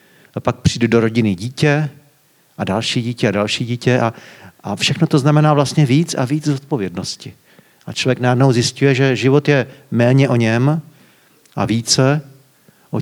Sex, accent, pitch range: male, native, 120-150 Hz